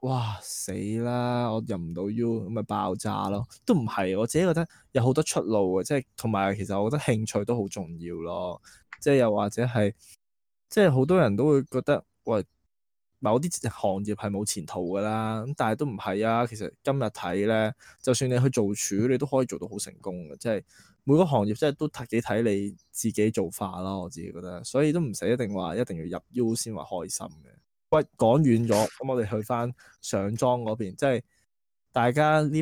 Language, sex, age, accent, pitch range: Chinese, male, 20-39, native, 100-130 Hz